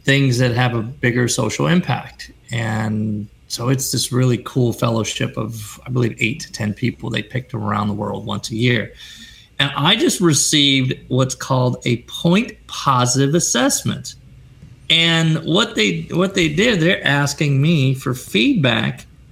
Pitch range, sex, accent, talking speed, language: 120-145 Hz, male, American, 150 wpm, English